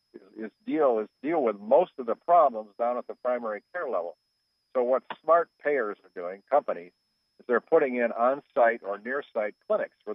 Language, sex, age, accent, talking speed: English, male, 60-79, American, 195 wpm